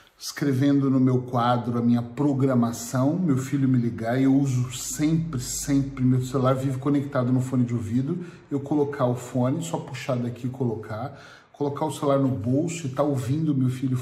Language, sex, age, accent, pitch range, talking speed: Portuguese, male, 40-59, Brazilian, 120-145 Hz, 180 wpm